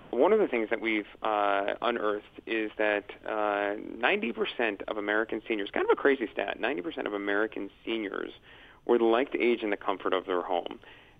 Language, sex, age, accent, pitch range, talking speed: English, male, 40-59, American, 100-115 Hz, 180 wpm